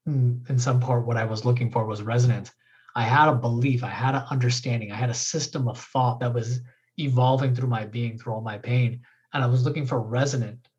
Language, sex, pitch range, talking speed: English, male, 115-145 Hz, 220 wpm